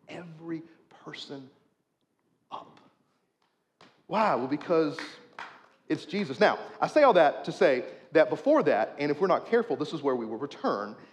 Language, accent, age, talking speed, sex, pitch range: English, American, 40-59, 160 wpm, male, 150-235 Hz